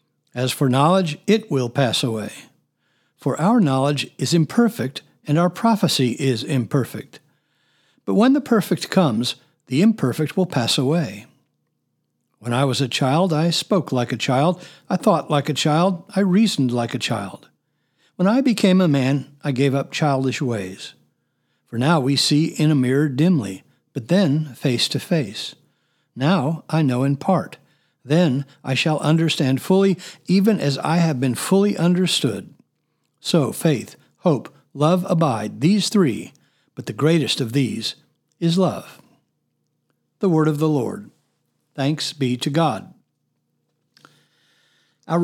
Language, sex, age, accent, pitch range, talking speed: English, male, 60-79, American, 135-175 Hz, 145 wpm